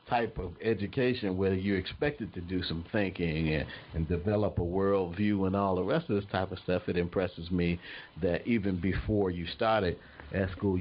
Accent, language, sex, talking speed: American, English, male, 195 wpm